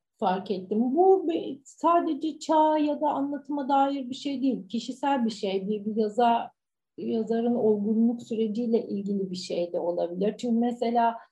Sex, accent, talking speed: female, native, 160 wpm